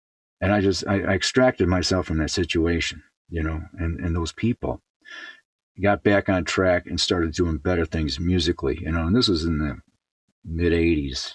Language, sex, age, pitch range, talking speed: English, male, 50-69, 80-100 Hz, 185 wpm